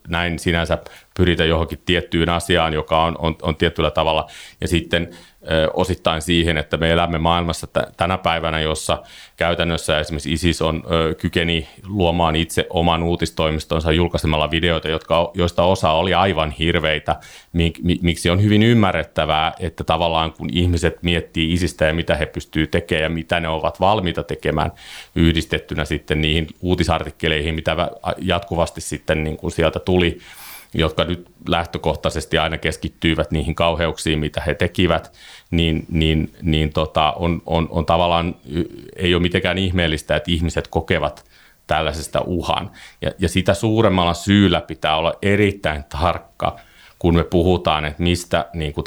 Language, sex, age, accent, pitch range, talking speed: Finnish, male, 30-49, native, 80-85 Hz, 140 wpm